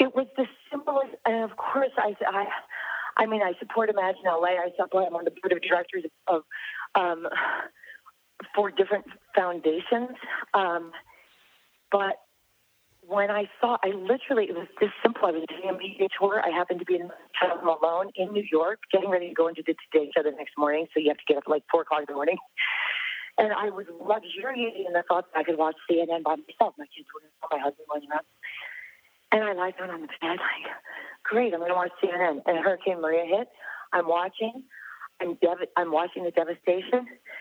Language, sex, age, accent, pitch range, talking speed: English, female, 40-59, American, 165-215 Hz, 205 wpm